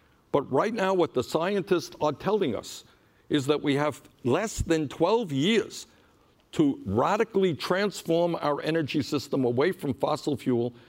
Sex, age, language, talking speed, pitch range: male, 60-79, English, 150 wpm, 140-190 Hz